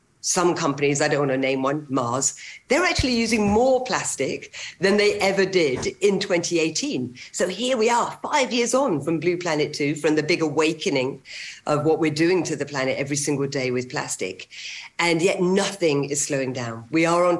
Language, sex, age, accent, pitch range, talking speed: English, female, 50-69, British, 135-175 Hz, 195 wpm